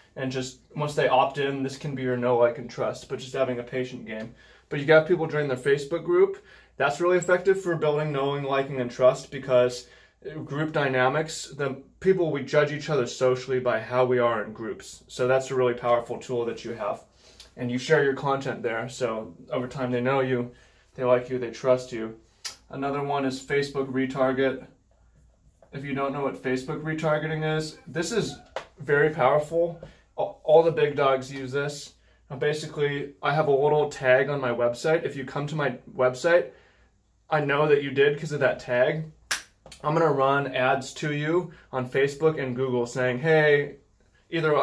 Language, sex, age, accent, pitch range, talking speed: English, male, 20-39, American, 125-150 Hz, 190 wpm